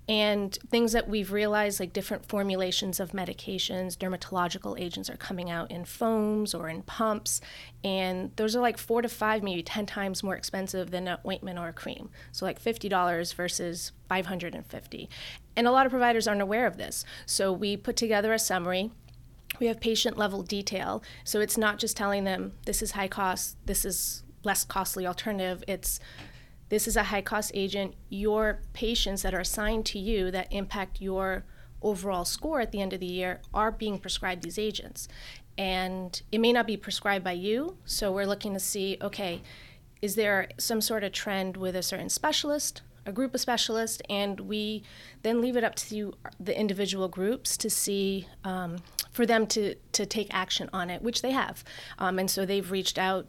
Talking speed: 185 wpm